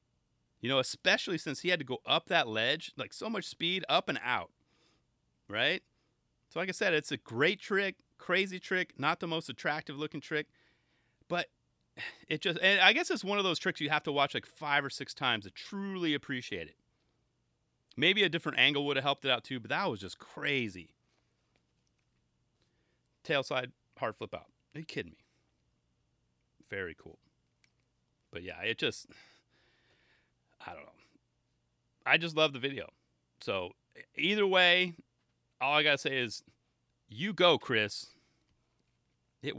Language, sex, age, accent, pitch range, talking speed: English, male, 30-49, American, 110-175 Hz, 165 wpm